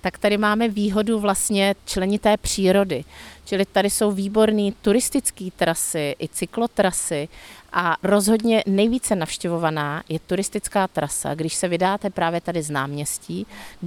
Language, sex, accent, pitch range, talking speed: Czech, female, native, 160-195 Hz, 130 wpm